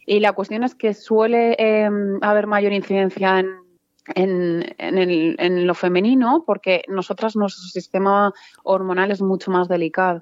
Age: 30-49